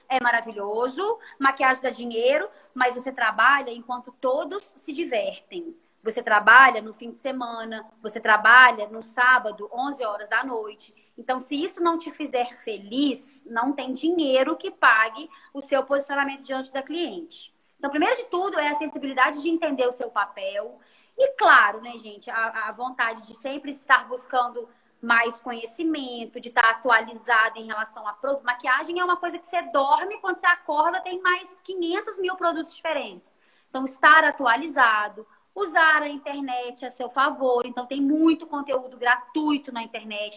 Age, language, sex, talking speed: 20-39, Portuguese, female, 160 wpm